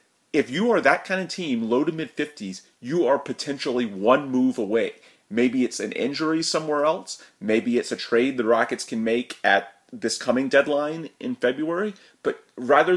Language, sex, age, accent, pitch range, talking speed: English, male, 30-49, American, 115-180 Hz, 175 wpm